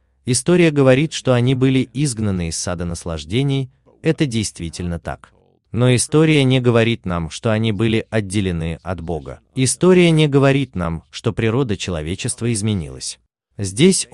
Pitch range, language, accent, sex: 95-135 Hz, Russian, native, male